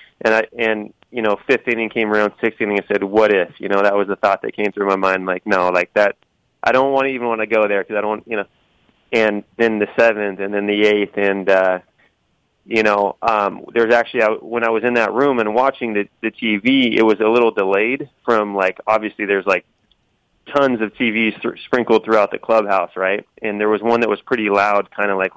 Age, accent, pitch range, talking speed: 30-49, American, 100-110 Hz, 235 wpm